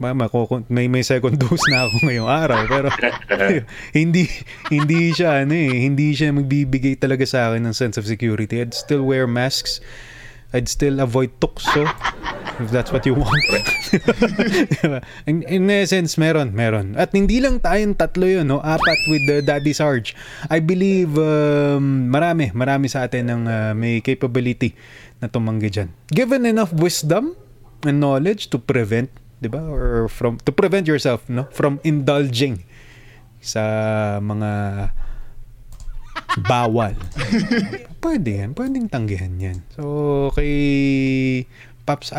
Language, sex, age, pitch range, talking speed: Filipino, male, 20-39, 120-155 Hz, 135 wpm